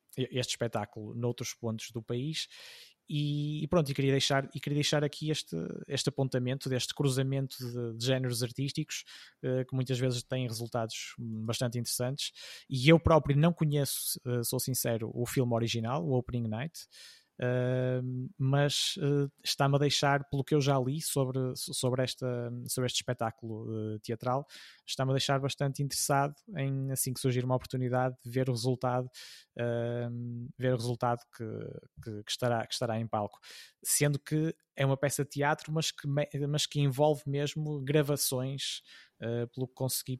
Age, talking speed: 20-39, 150 wpm